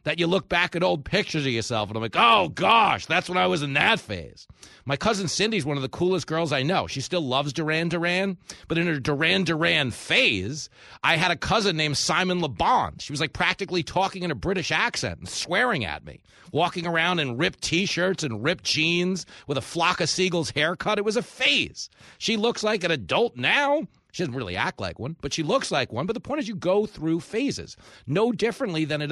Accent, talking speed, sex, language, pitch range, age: American, 225 wpm, male, English, 130-185 Hz, 40-59